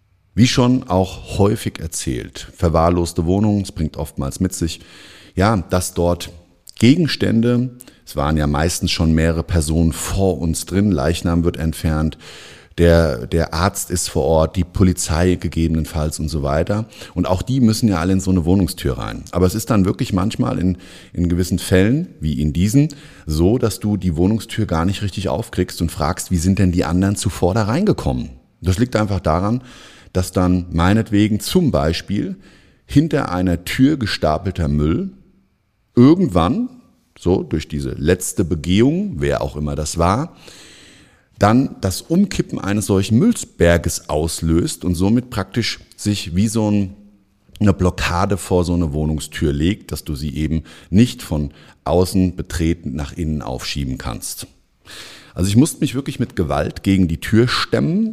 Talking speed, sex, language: 160 wpm, male, German